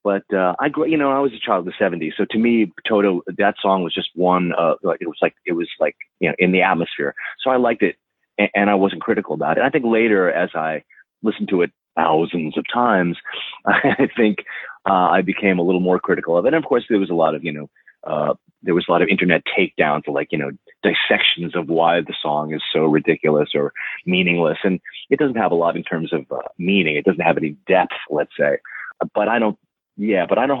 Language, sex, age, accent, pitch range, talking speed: English, male, 30-49, American, 80-100 Hz, 245 wpm